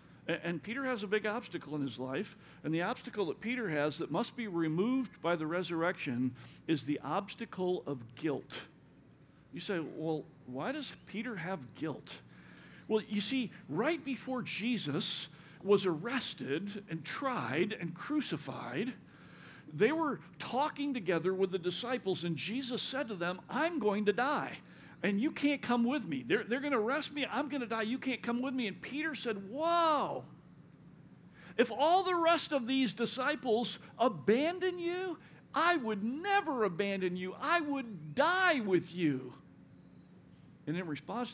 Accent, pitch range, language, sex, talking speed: American, 165-255 Hz, English, male, 160 wpm